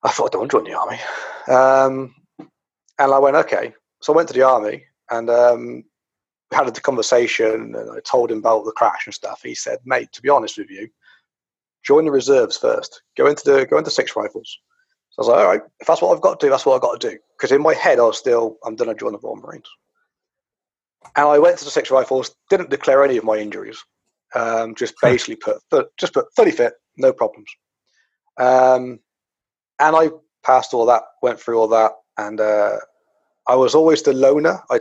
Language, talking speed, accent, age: English, 220 wpm, British, 30-49